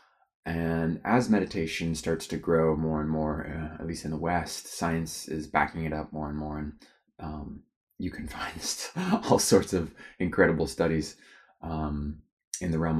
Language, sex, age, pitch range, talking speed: English, male, 20-39, 80-105 Hz, 170 wpm